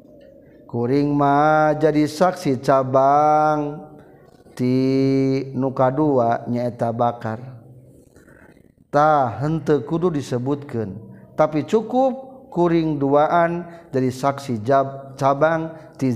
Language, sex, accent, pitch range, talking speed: Indonesian, male, native, 125-155 Hz, 80 wpm